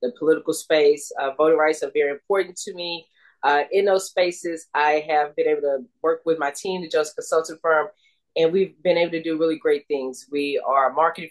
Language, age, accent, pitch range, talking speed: English, 30-49, American, 145-190 Hz, 220 wpm